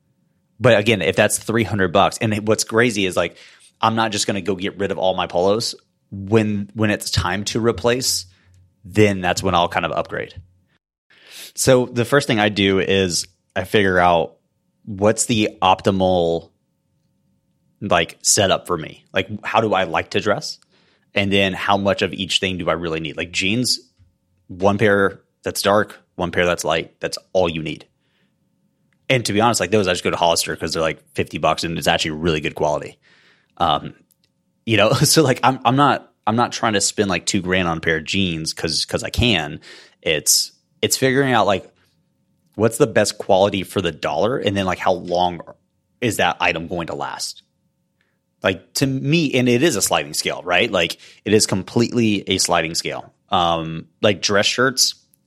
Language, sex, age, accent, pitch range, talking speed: English, male, 30-49, American, 90-110 Hz, 190 wpm